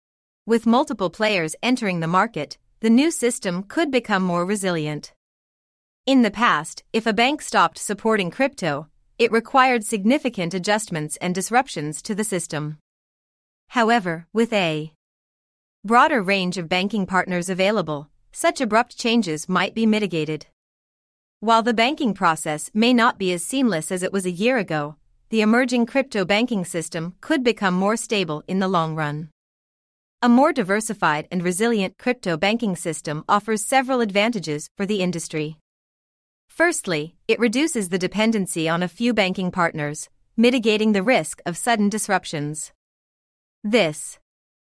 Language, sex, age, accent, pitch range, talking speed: English, female, 30-49, American, 170-235 Hz, 140 wpm